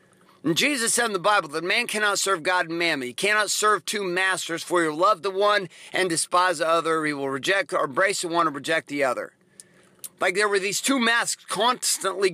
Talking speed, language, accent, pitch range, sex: 220 wpm, English, American, 180-220 Hz, male